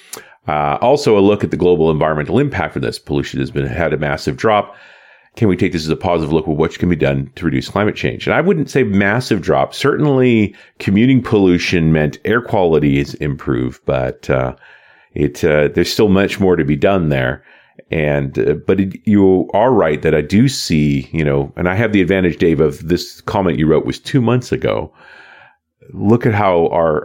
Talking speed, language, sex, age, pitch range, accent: 205 wpm, English, male, 40-59, 75-100 Hz, American